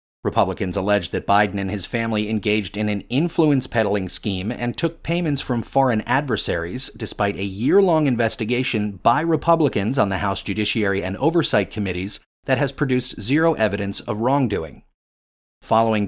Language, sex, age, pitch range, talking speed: English, male, 30-49, 100-130 Hz, 145 wpm